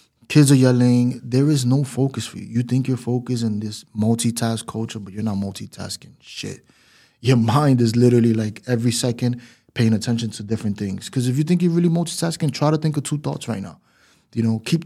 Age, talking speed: 20-39, 210 wpm